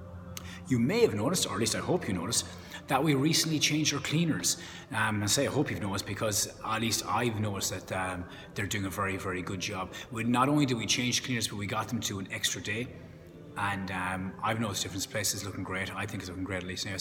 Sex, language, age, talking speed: male, English, 30-49, 240 wpm